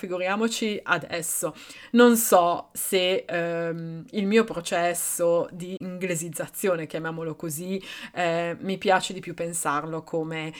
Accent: native